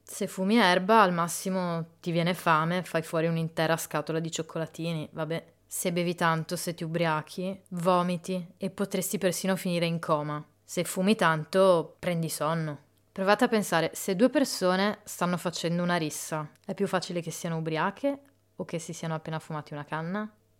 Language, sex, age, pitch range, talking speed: Italian, female, 20-39, 160-180 Hz, 165 wpm